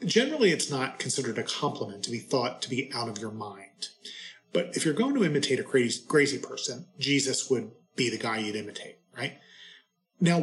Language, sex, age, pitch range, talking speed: English, male, 30-49, 120-145 Hz, 195 wpm